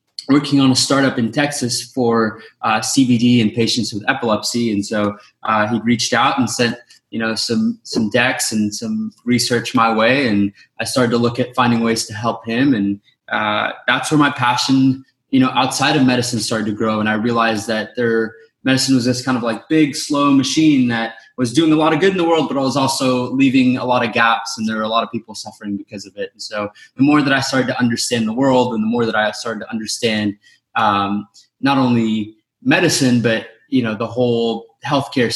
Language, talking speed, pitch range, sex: English, 220 wpm, 110-135 Hz, male